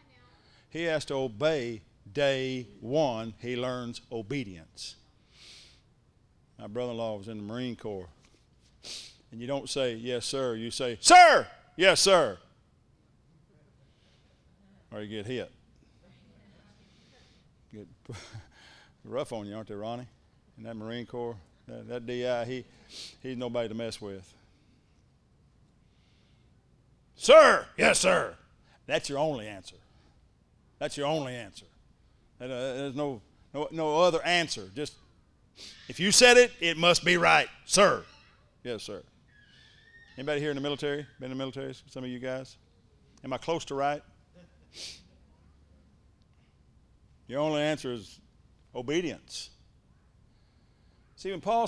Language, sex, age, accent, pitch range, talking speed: English, male, 50-69, American, 110-150 Hz, 125 wpm